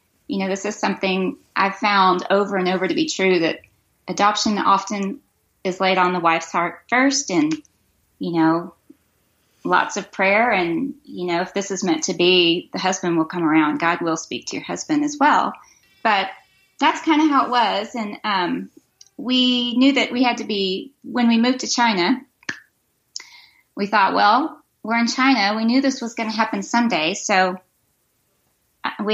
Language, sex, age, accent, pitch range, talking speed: English, female, 30-49, American, 185-245 Hz, 180 wpm